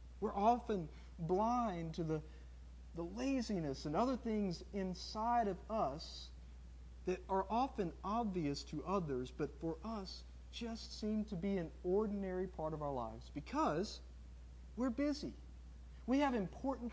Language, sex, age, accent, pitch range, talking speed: English, male, 50-69, American, 135-215 Hz, 135 wpm